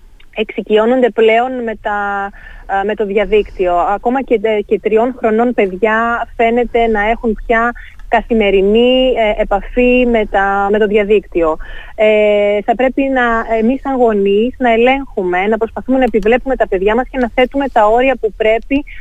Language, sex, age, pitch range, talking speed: Greek, female, 20-39, 205-245 Hz, 150 wpm